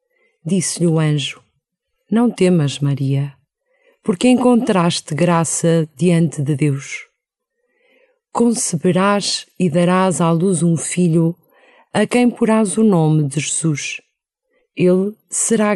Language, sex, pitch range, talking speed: Portuguese, female, 170-235 Hz, 105 wpm